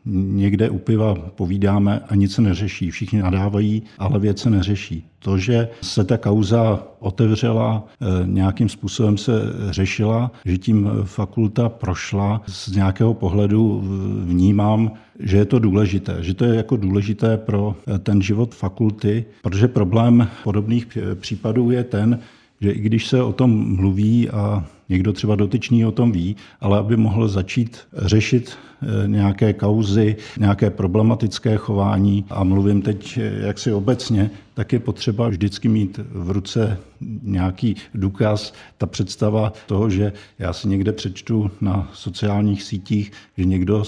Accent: native